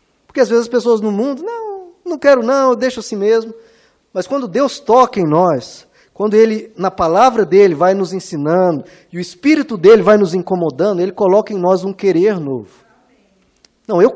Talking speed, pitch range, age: 190 wpm, 175-240 Hz, 20-39